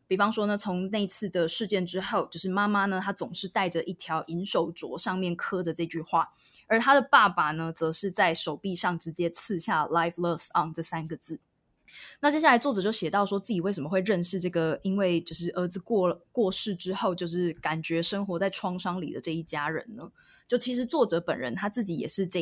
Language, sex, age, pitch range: Chinese, female, 20-39, 165-205 Hz